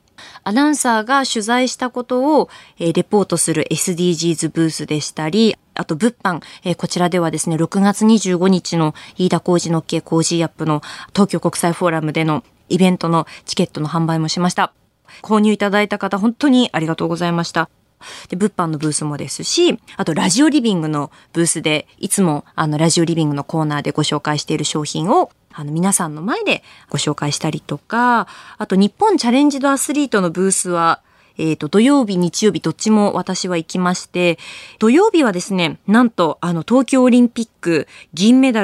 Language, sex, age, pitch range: Japanese, female, 20-39, 160-215 Hz